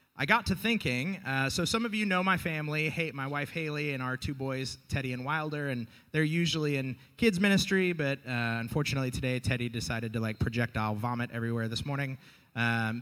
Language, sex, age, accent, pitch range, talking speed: English, male, 30-49, American, 120-165 Hz, 200 wpm